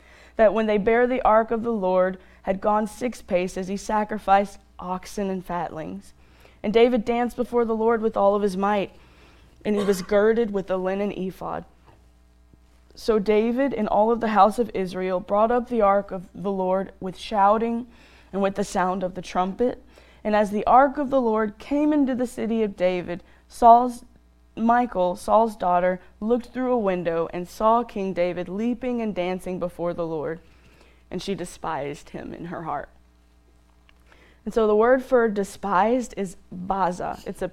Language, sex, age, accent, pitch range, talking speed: English, female, 20-39, American, 170-220 Hz, 175 wpm